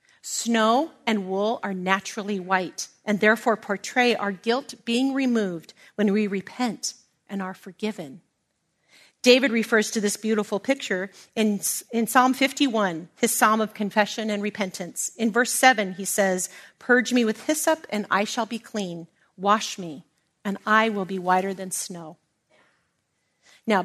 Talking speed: 145 wpm